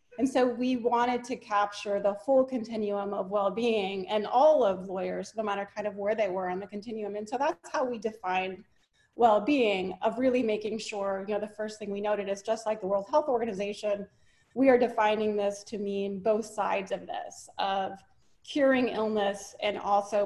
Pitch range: 200-235 Hz